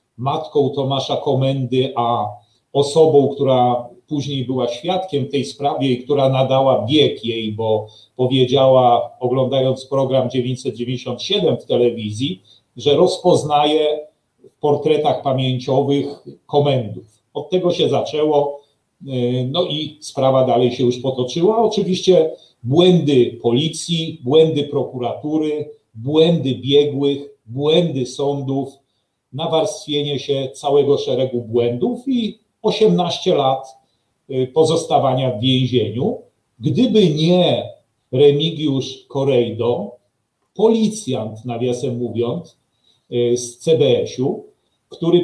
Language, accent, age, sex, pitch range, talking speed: Polish, native, 40-59, male, 125-160 Hz, 95 wpm